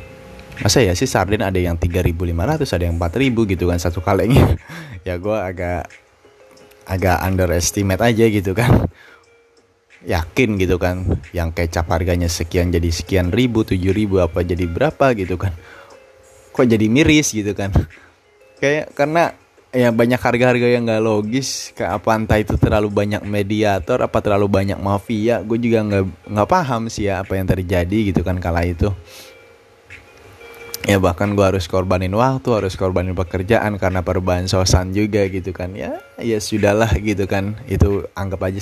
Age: 20-39